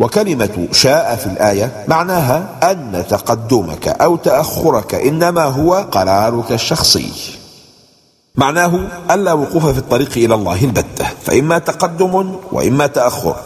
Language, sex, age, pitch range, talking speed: English, male, 50-69, 105-155 Hz, 115 wpm